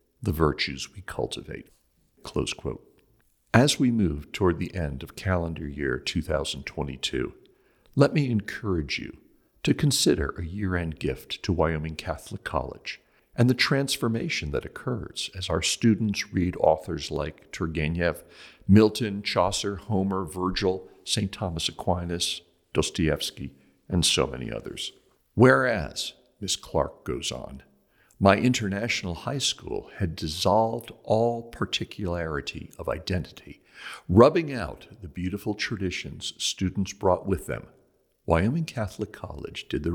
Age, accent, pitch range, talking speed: 60-79, American, 85-110 Hz, 125 wpm